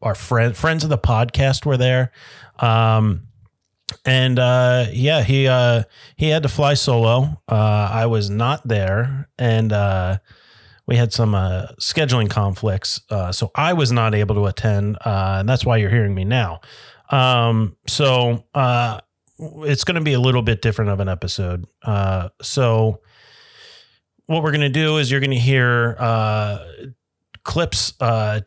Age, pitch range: 30-49, 105-130 Hz